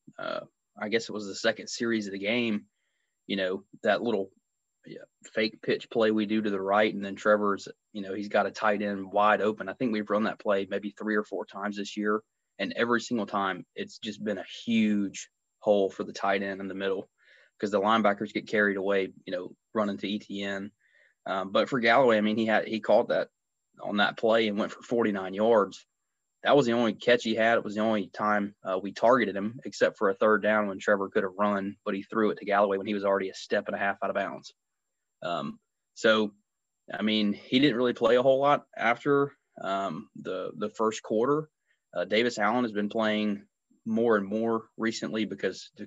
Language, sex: English, male